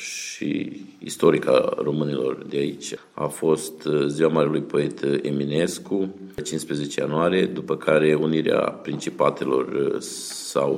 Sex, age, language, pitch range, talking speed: male, 50-69, Romanian, 75-85 Hz, 105 wpm